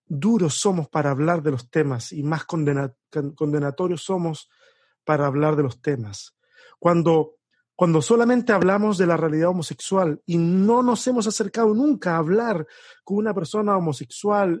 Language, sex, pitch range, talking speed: Spanish, male, 150-195 Hz, 150 wpm